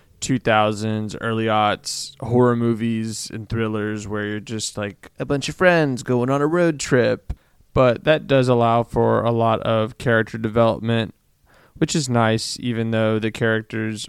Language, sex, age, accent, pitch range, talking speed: English, male, 20-39, American, 110-130 Hz, 160 wpm